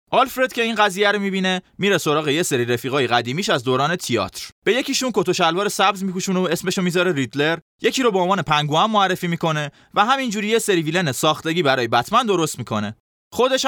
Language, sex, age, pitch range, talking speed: Persian, male, 20-39, 140-205 Hz, 195 wpm